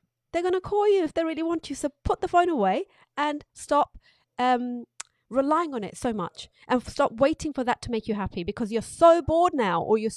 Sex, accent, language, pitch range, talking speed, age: female, British, English, 185-245 Hz, 230 wpm, 30-49